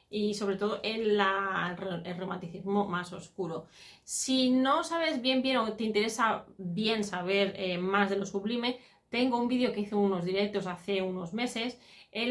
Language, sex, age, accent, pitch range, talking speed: Spanish, female, 30-49, Spanish, 185-225 Hz, 170 wpm